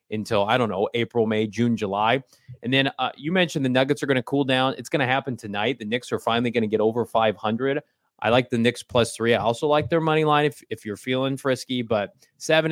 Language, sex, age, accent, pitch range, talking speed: English, male, 30-49, American, 110-135 Hz, 250 wpm